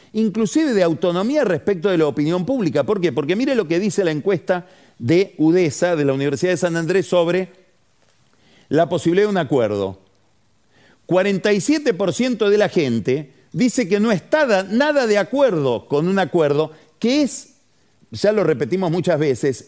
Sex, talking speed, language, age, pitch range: male, 160 wpm, Spanish, 40-59, 135-195 Hz